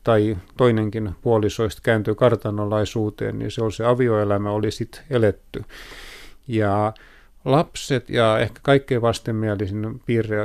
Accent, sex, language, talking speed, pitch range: native, male, Finnish, 115 wpm, 105-125 Hz